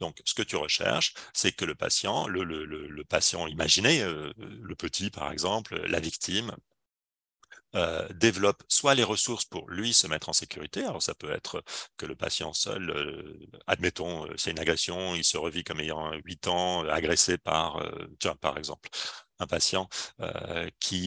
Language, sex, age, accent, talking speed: French, male, 40-59, French, 175 wpm